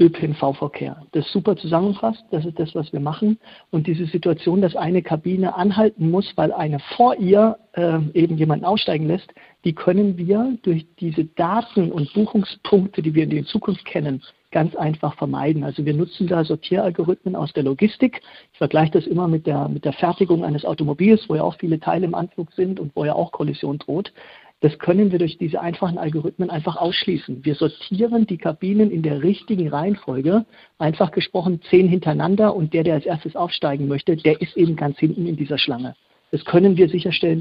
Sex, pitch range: male, 155-195 Hz